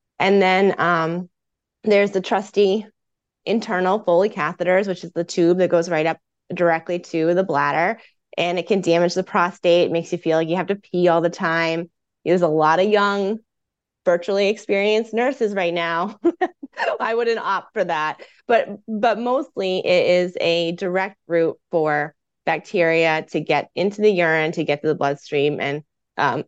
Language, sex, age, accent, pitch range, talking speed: English, female, 20-39, American, 155-190 Hz, 170 wpm